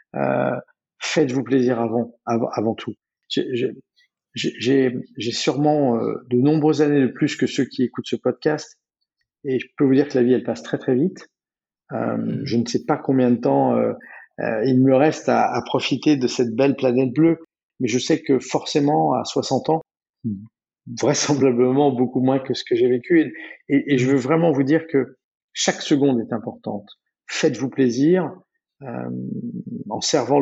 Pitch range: 125-145 Hz